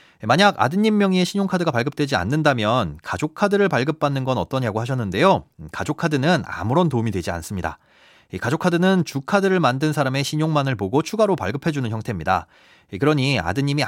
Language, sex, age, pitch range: Korean, male, 30-49, 120-175 Hz